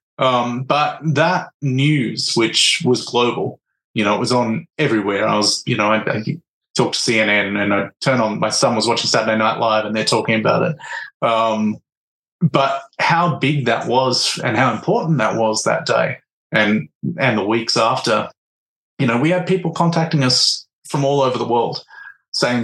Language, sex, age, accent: French, male, 30-49, Australian